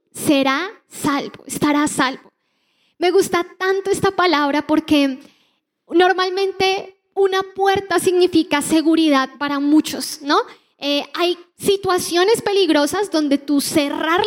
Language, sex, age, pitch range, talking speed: Spanish, female, 20-39, 285-370 Hz, 110 wpm